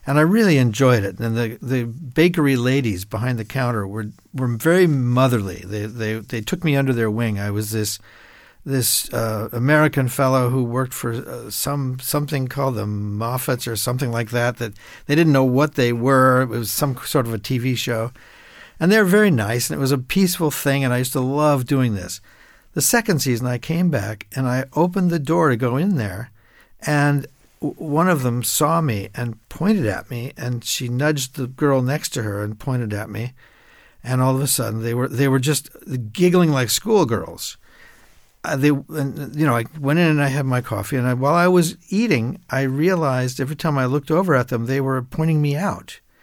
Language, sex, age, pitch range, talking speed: English, male, 50-69, 120-150 Hz, 210 wpm